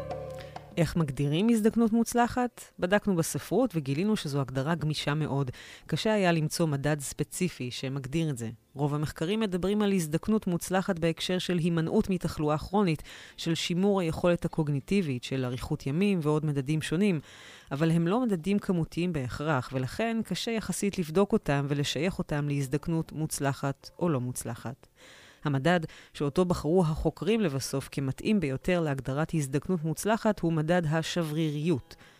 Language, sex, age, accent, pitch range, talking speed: Hebrew, female, 30-49, native, 145-185 Hz, 130 wpm